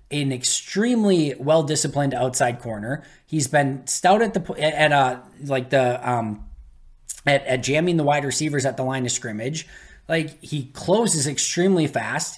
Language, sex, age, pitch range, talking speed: English, male, 20-39, 130-175 Hz, 150 wpm